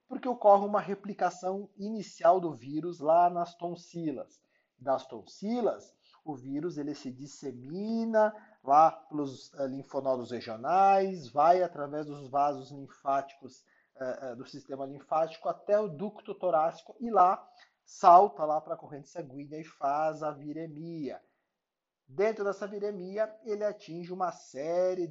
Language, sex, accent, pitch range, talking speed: Portuguese, male, Brazilian, 140-190 Hz, 125 wpm